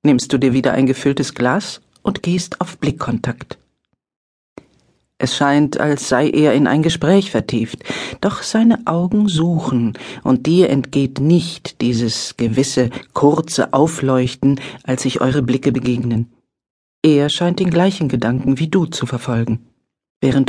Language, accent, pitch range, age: German, German, 125-180 Hz, 50-69